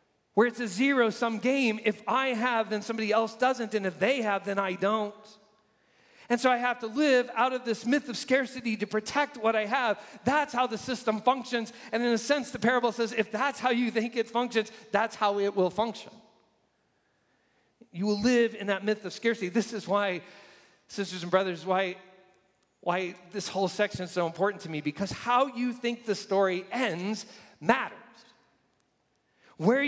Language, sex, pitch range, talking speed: English, male, 205-245 Hz, 185 wpm